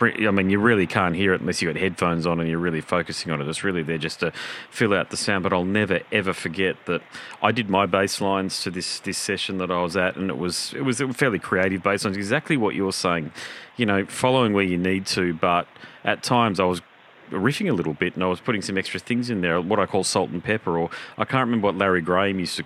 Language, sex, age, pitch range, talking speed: English, male, 30-49, 90-105 Hz, 265 wpm